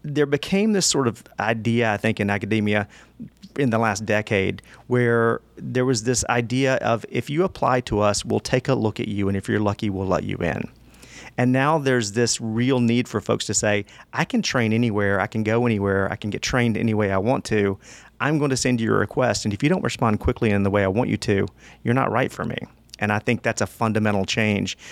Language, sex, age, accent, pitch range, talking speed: English, male, 40-59, American, 100-120 Hz, 235 wpm